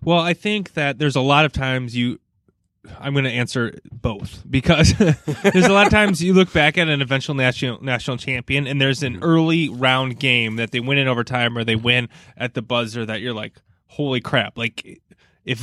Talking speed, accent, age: 205 wpm, American, 20-39